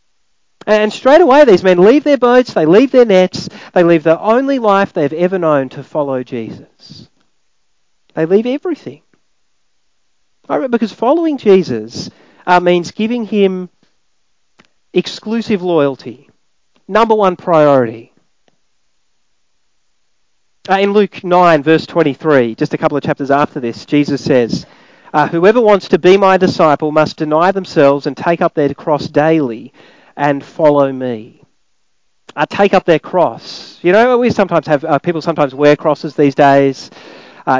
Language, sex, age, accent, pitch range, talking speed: English, male, 40-59, Australian, 145-205 Hz, 145 wpm